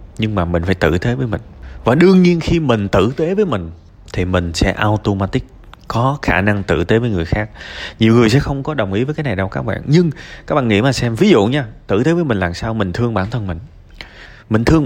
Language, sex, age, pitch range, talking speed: Vietnamese, male, 20-39, 95-135 Hz, 260 wpm